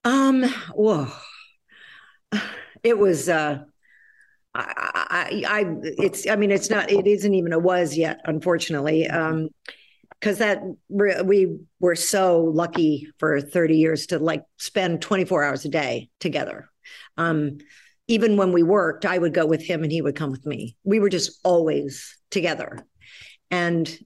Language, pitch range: English, 165-205 Hz